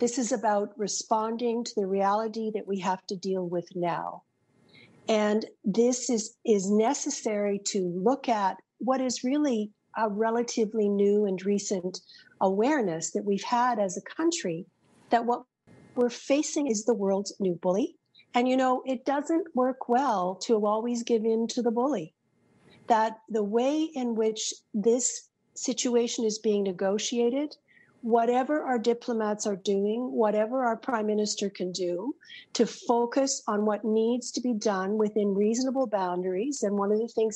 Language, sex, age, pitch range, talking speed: English, female, 50-69, 200-245 Hz, 155 wpm